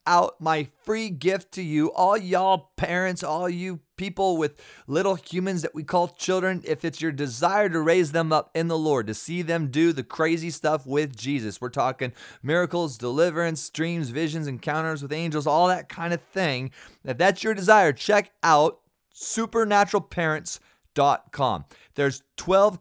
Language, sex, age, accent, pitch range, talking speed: English, male, 30-49, American, 145-180 Hz, 165 wpm